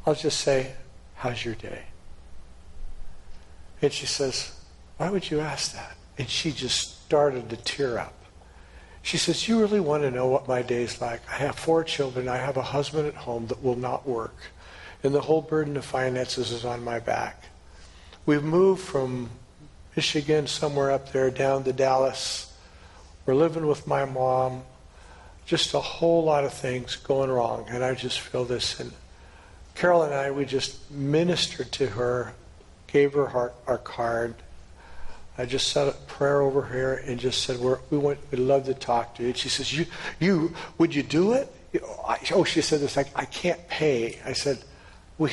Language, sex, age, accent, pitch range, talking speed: English, male, 60-79, American, 115-145 Hz, 180 wpm